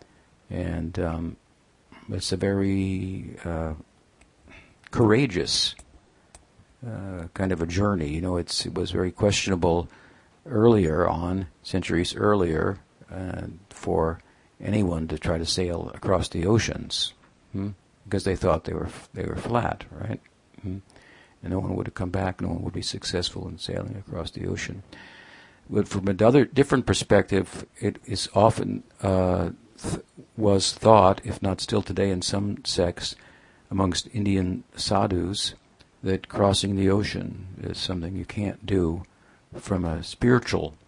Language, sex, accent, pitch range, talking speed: English, male, American, 90-100 Hz, 140 wpm